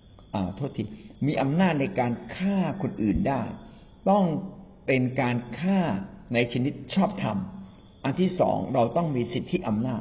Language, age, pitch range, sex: Thai, 60-79, 110-155 Hz, male